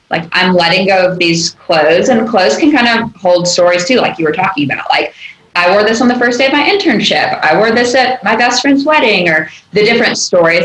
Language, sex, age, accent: English, female, 10-29, American